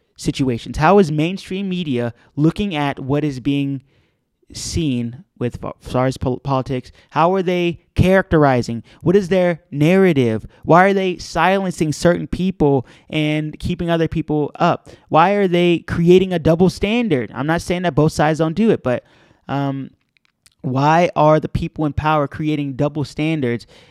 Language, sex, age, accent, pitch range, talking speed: English, male, 20-39, American, 130-165 Hz, 150 wpm